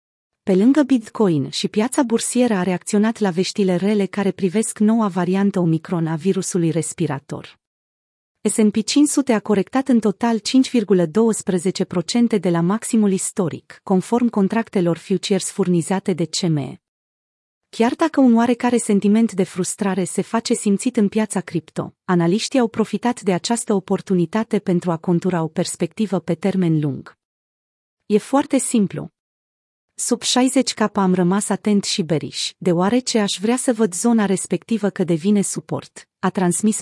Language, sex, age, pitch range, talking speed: Romanian, female, 30-49, 175-225 Hz, 140 wpm